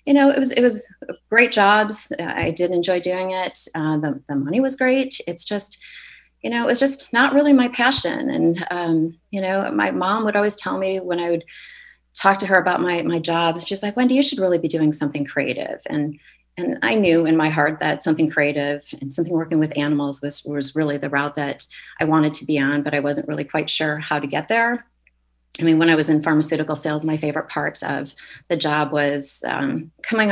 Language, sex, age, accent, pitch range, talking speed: English, female, 30-49, American, 150-190 Hz, 225 wpm